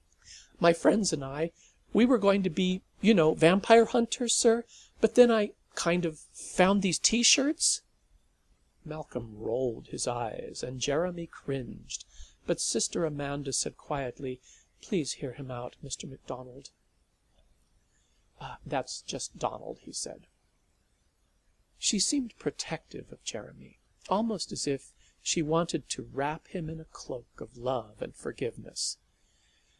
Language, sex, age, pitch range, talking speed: English, male, 50-69, 135-205 Hz, 135 wpm